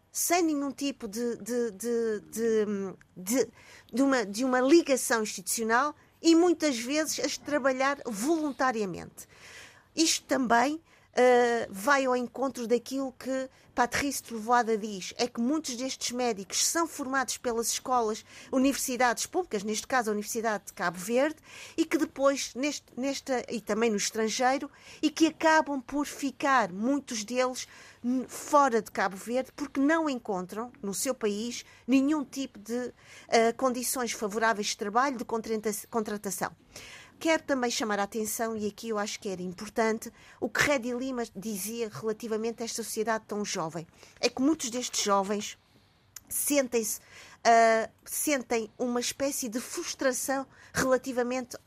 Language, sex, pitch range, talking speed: Portuguese, female, 220-275 Hz, 140 wpm